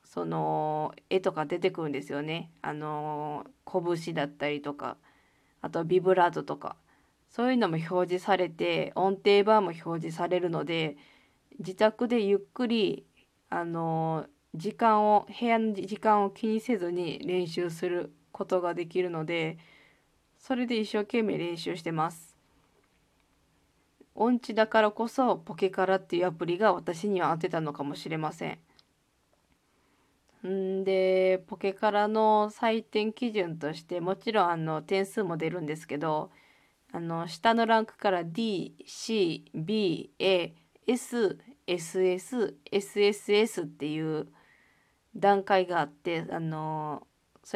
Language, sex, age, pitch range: Japanese, female, 20-39, 165-205 Hz